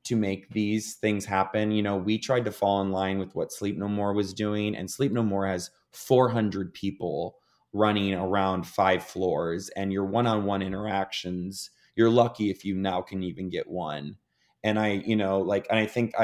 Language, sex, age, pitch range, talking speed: English, male, 20-39, 100-120 Hz, 190 wpm